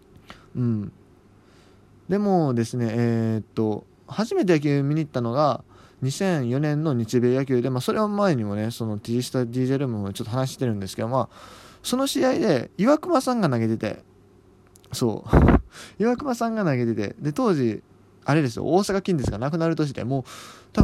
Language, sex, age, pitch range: Japanese, male, 20-39, 110-170 Hz